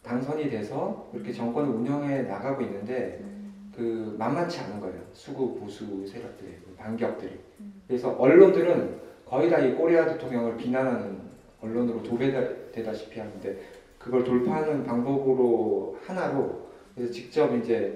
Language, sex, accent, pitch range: Korean, male, native, 115-145 Hz